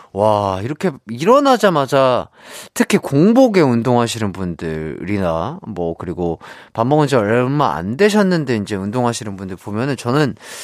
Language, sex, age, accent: Korean, male, 30-49, native